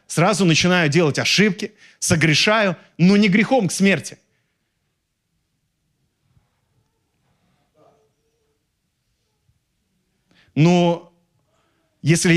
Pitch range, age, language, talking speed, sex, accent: 125-170 Hz, 30-49, Russian, 60 wpm, male, native